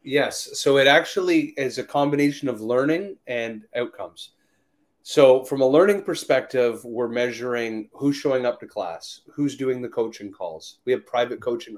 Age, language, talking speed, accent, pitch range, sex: 30-49, English, 165 wpm, American, 110-145 Hz, male